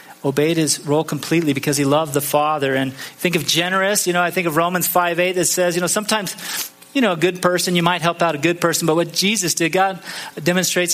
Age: 30-49